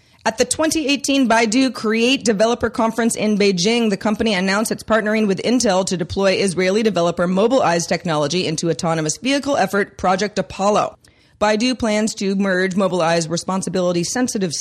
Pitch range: 165-220 Hz